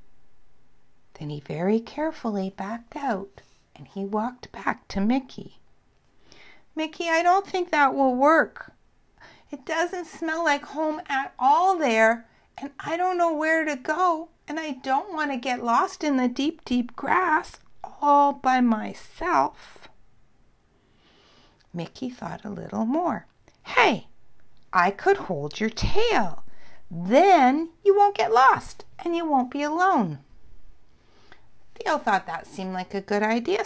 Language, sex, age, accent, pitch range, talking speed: English, female, 60-79, American, 200-320 Hz, 140 wpm